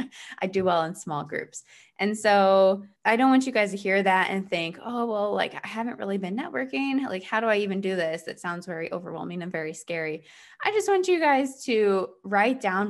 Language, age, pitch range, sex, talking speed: English, 20-39, 175-230 Hz, female, 225 wpm